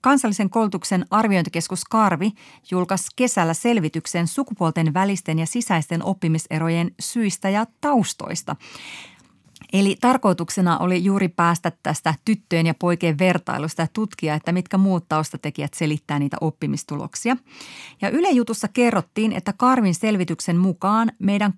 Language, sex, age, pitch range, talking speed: Finnish, female, 30-49, 165-205 Hz, 115 wpm